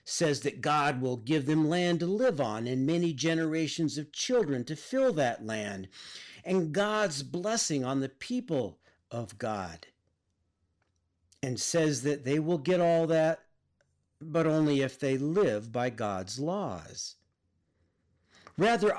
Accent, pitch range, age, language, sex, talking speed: American, 105-175 Hz, 50-69, English, male, 140 wpm